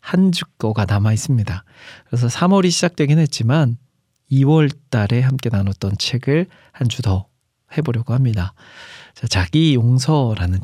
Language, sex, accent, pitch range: Korean, male, native, 110-140 Hz